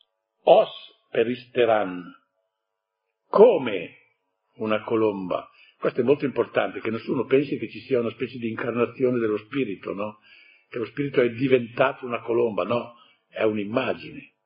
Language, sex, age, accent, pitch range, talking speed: Italian, male, 50-69, native, 110-155 Hz, 135 wpm